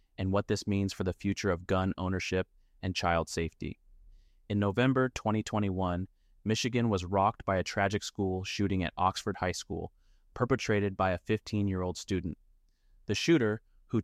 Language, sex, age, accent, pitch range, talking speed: English, male, 30-49, American, 95-105 Hz, 155 wpm